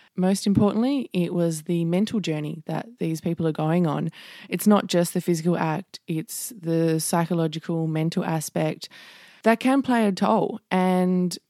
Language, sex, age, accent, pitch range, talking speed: English, female, 20-39, Australian, 165-200 Hz, 155 wpm